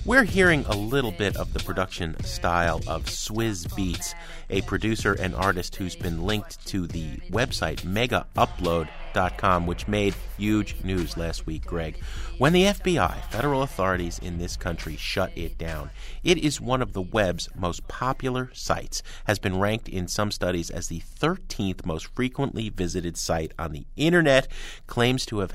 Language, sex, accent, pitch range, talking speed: English, male, American, 90-135 Hz, 160 wpm